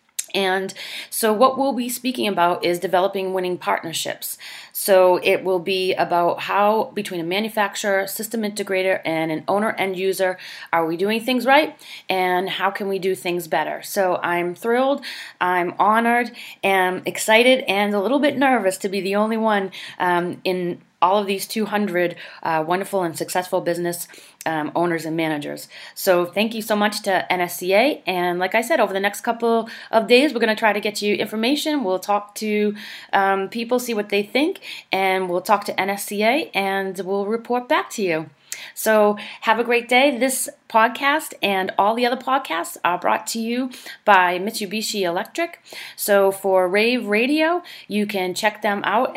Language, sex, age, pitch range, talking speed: English, female, 30-49, 185-225 Hz, 175 wpm